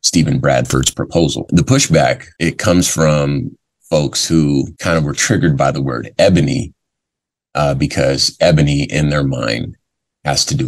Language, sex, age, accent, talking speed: English, male, 30-49, American, 150 wpm